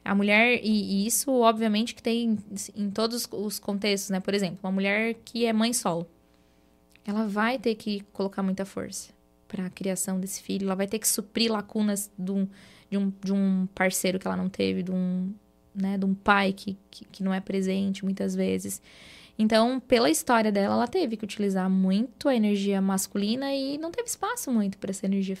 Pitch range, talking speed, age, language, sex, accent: 190-225 Hz, 200 wpm, 10-29, Portuguese, female, Brazilian